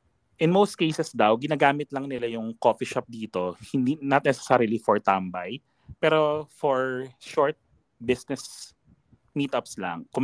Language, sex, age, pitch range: Filipino, male, 20-39, 110-165 Hz